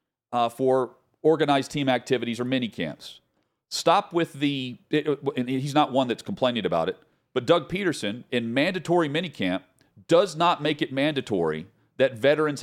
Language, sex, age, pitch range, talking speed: English, male, 40-59, 120-150 Hz, 145 wpm